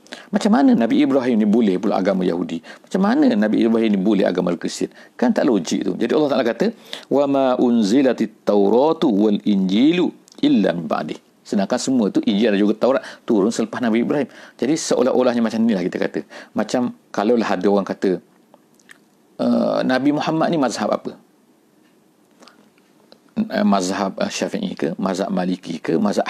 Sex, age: male, 50-69